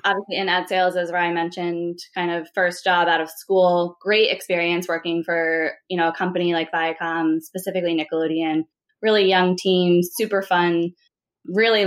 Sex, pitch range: female, 170-200 Hz